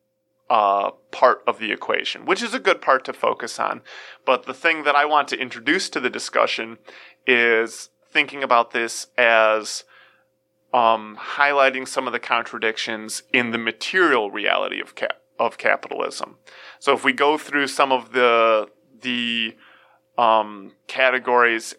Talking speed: 150 wpm